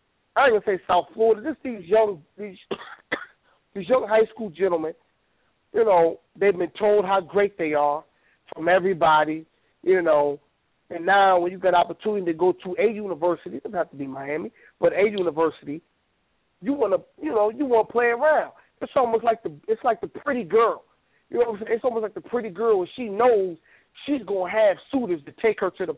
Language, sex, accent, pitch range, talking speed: English, male, American, 185-270 Hz, 205 wpm